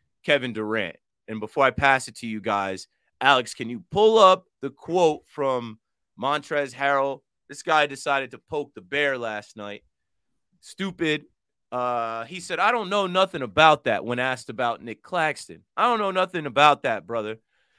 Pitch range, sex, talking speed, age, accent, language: 125-160 Hz, male, 170 wpm, 30-49, American, English